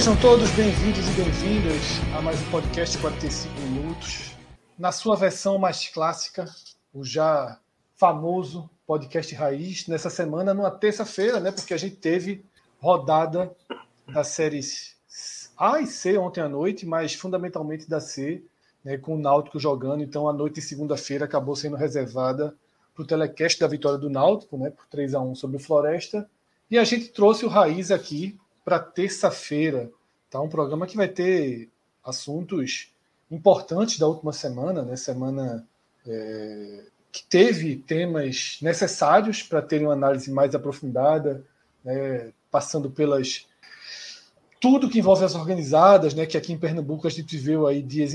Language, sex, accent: Portuguese, male, Brazilian